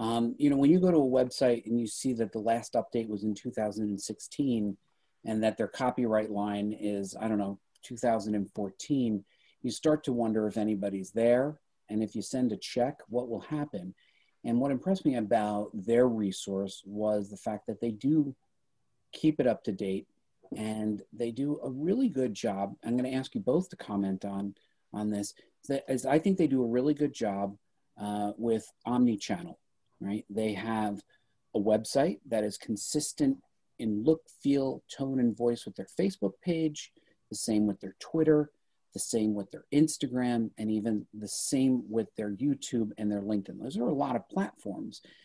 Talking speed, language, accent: 185 wpm, English, American